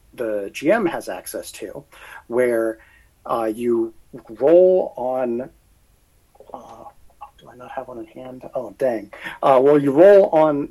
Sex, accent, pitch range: male, American, 115-170 Hz